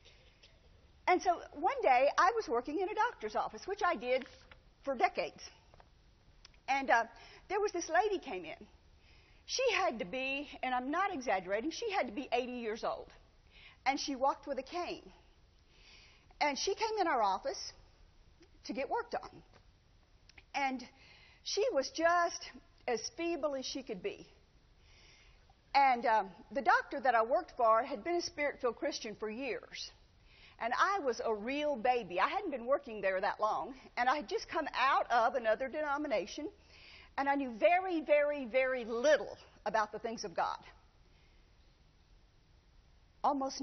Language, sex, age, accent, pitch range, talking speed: English, female, 50-69, American, 230-345 Hz, 160 wpm